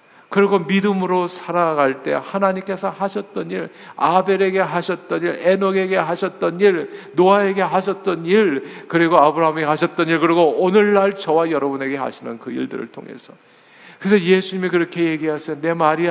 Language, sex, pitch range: Korean, male, 140-195 Hz